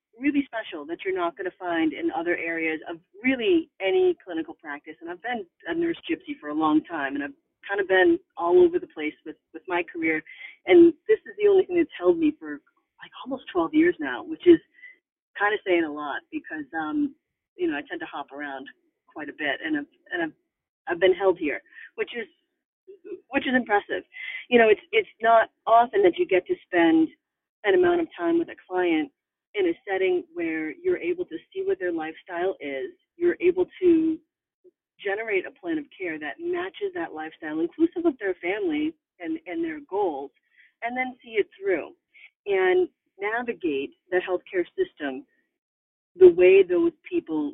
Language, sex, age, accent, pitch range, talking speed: English, female, 30-49, American, 225-360 Hz, 190 wpm